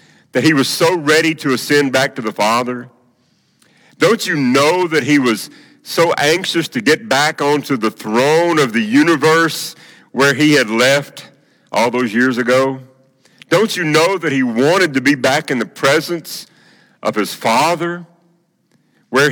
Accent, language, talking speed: American, English, 160 wpm